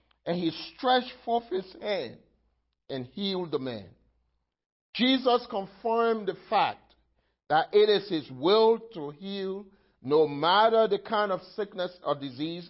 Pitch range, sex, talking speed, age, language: 155-210 Hz, male, 135 wpm, 50-69, English